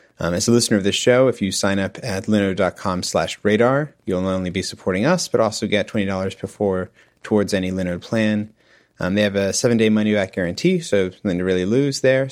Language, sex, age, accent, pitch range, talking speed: English, male, 30-49, American, 100-130 Hz, 225 wpm